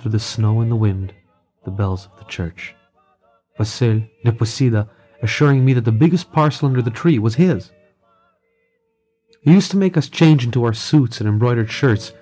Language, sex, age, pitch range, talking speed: English, male, 30-49, 110-130 Hz, 175 wpm